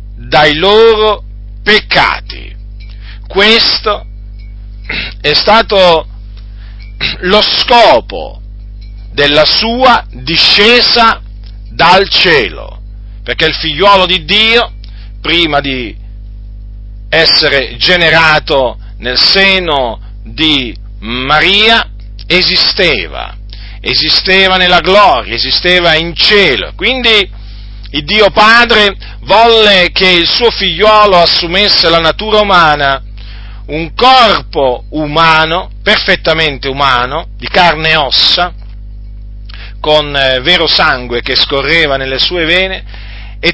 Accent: native